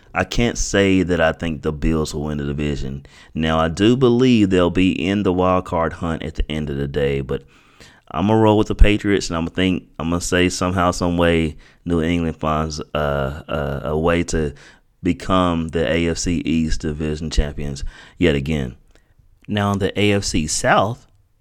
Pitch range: 75-90 Hz